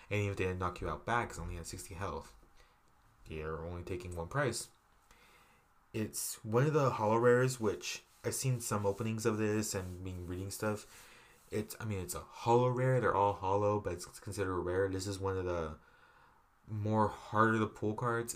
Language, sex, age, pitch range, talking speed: English, male, 20-39, 90-115 Hz, 200 wpm